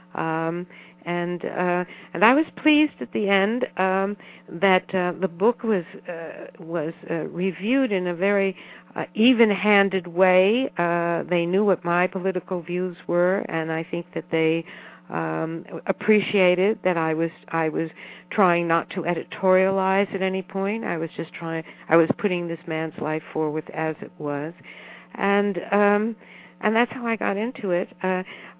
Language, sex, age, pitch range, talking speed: English, female, 60-79, 165-200 Hz, 165 wpm